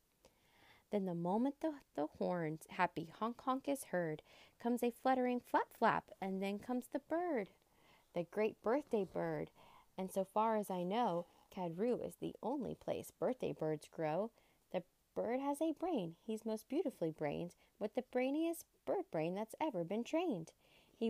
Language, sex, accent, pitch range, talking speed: English, female, American, 180-255 Hz, 160 wpm